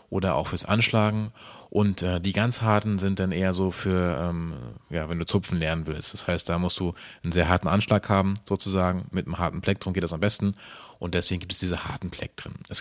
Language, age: German, 30-49